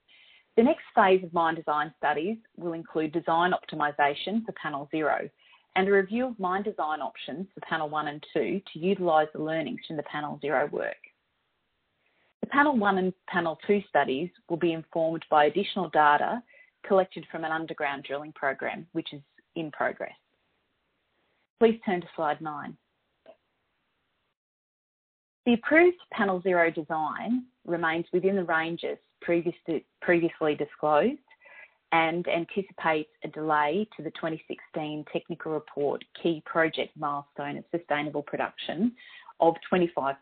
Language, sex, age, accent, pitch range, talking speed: English, female, 30-49, Australian, 150-190 Hz, 135 wpm